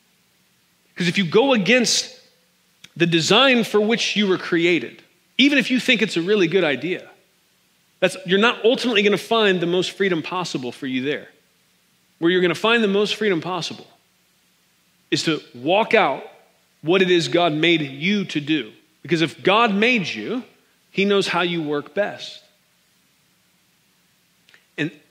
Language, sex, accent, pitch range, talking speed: English, male, American, 150-200 Hz, 165 wpm